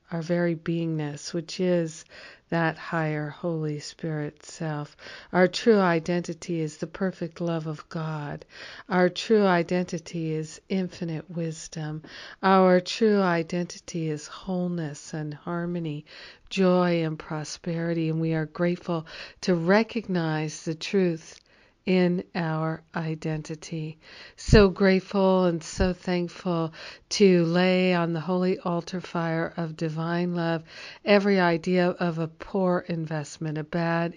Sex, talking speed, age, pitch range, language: female, 120 wpm, 50-69, 160-185 Hz, English